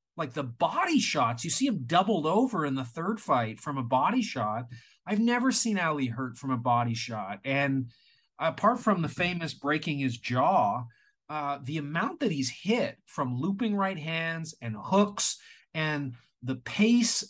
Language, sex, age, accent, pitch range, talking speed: English, male, 30-49, American, 140-200 Hz, 170 wpm